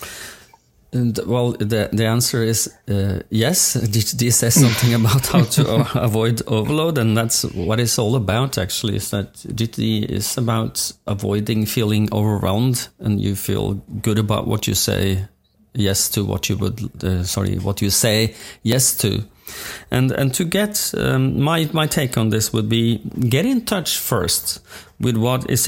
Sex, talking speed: male, 165 wpm